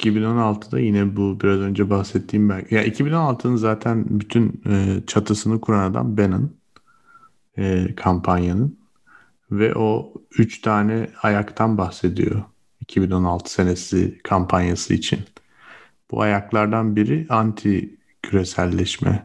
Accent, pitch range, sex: native, 95-110 Hz, male